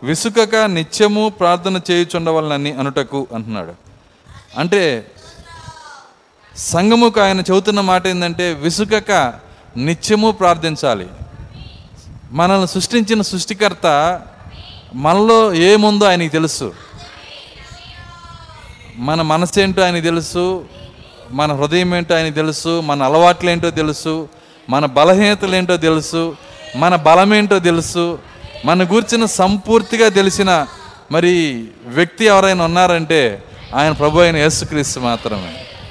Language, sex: Telugu, male